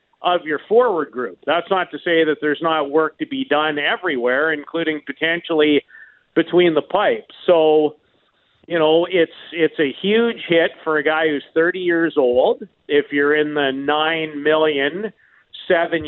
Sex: male